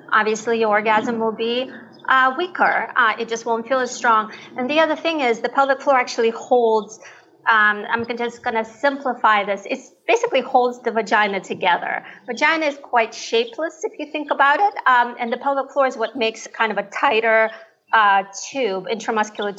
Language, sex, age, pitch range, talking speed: English, female, 30-49, 215-255 Hz, 185 wpm